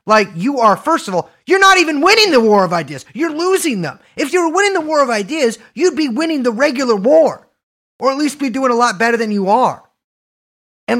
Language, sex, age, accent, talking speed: English, male, 30-49, American, 235 wpm